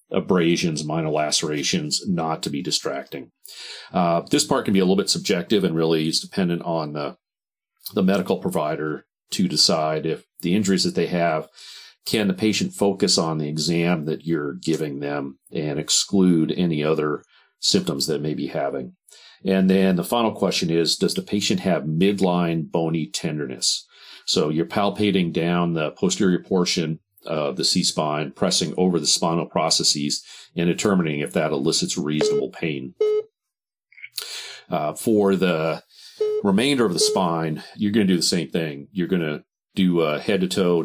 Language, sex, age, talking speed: English, male, 40-59, 165 wpm